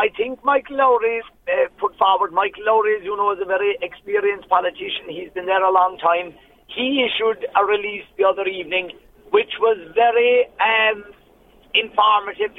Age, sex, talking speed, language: 50-69, male, 160 wpm, English